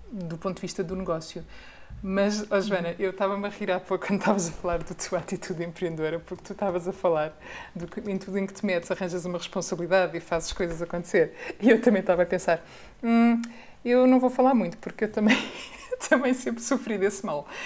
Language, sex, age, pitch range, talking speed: Portuguese, female, 30-49, 175-230 Hz, 215 wpm